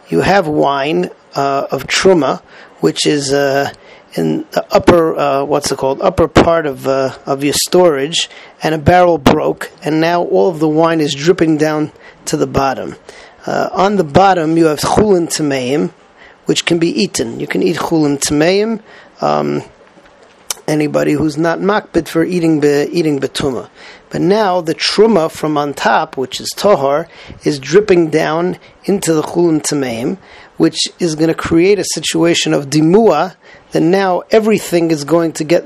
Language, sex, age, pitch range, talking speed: English, male, 40-59, 145-180 Hz, 170 wpm